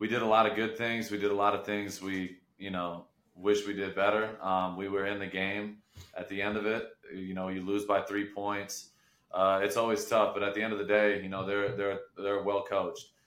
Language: English